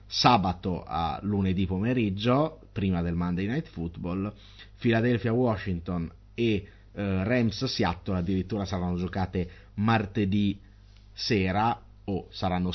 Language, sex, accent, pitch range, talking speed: Italian, male, native, 95-115 Hz, 100 wpm